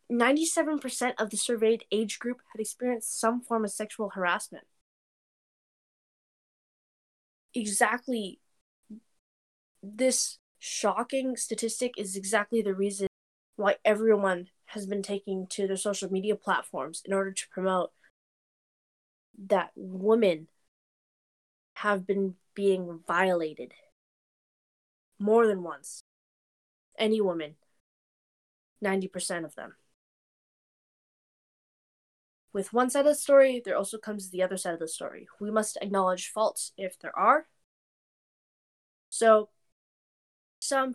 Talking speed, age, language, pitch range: 105 wpm, 20-39, English, 190-230 Hz